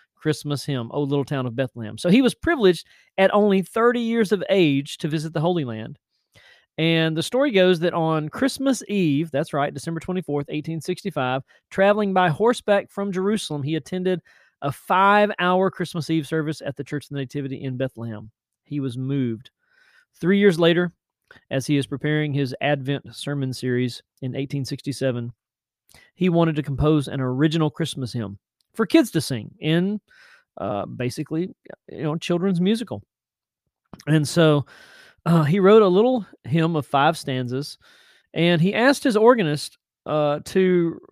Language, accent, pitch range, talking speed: English, American, 140-190 Hz, 160 wpm